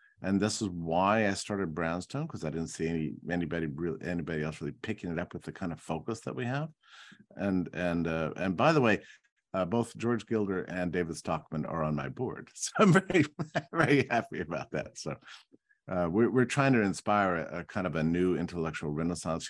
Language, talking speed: English, 210 wpm